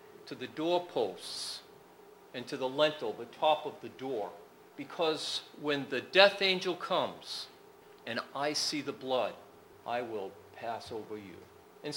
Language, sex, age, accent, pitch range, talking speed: English, male, 50-69, American, 125-160 Hz, 145 wpm